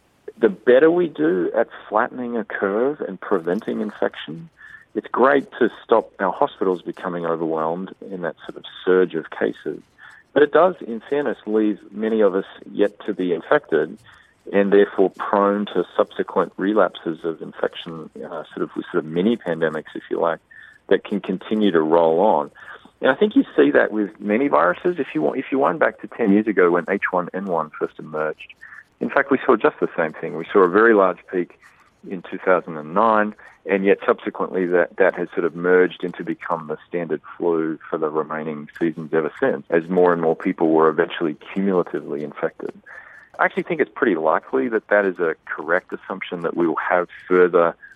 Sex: male